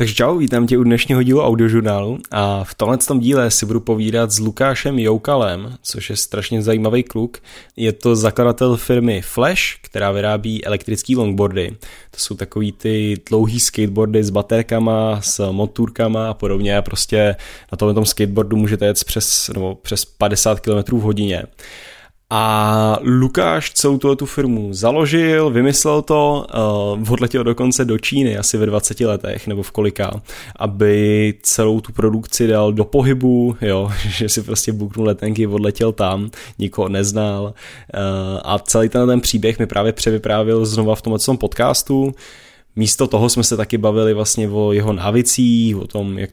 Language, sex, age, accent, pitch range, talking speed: Czech, male, 20-39, native, 105-120 Hz, 155 wpm